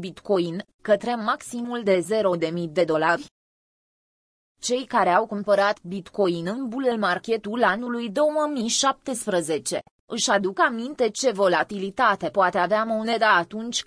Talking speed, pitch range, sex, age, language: 115 wpm, 185-245 Hz, female, 20-39, Romanian